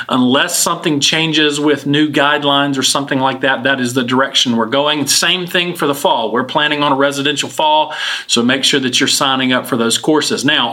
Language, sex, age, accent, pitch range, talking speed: English, male, 40-59, American, 135-160 Hz, 215 wpm